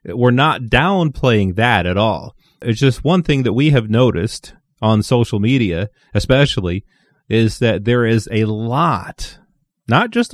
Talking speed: 150 wpm